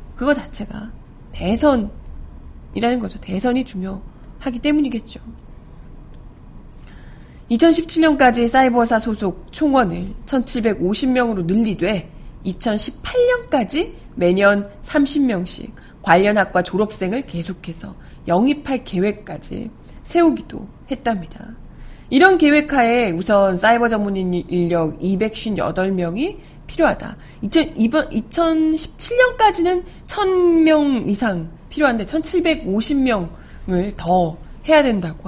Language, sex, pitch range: Korean, female, 190-285 Hz